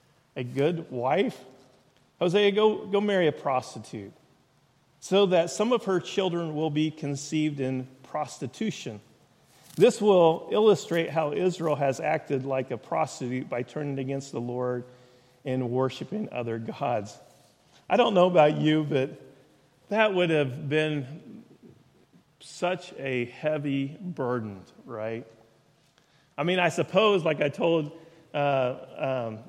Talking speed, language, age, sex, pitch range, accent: 130 wpm, English, 40-59, male, 130-165 Hz, American